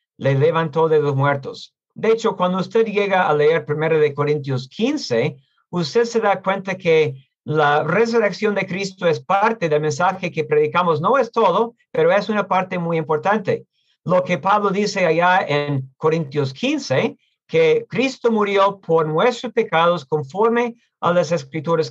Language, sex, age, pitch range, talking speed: English, male, 50-69, 160-220 Hz, 160 wpm